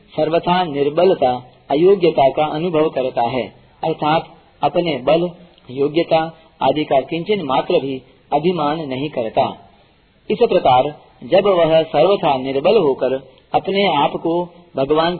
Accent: native